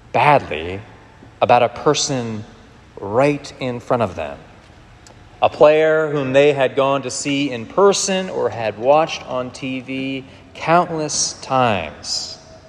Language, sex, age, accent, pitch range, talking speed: English, male, 30-49, American, 100-135 Hz, 125 wpm